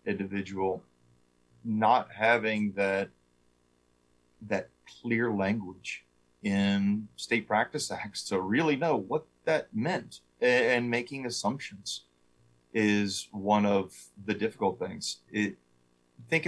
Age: 30-49